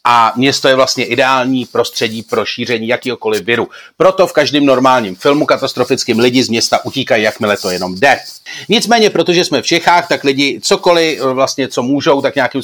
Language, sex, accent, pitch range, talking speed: Czech, male, native, 130-170 Hz, 175 wpm